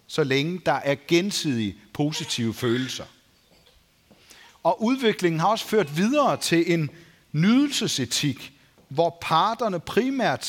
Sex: male